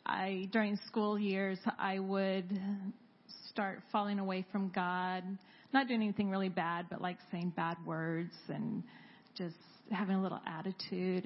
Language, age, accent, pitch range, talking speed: English, 40-59, American, 190-225 Hz, 140 wpm